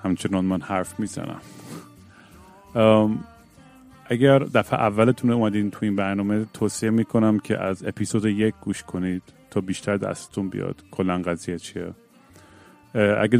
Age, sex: 40-59, male